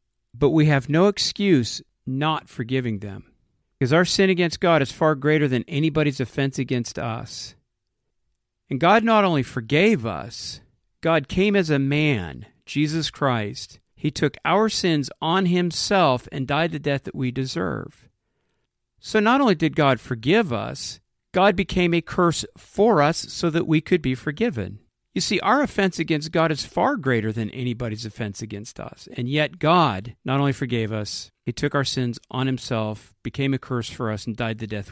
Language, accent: English, American